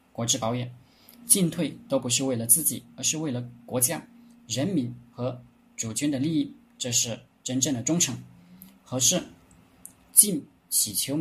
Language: Chinese